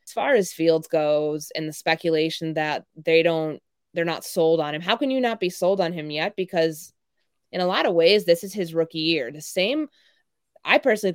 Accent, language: American, English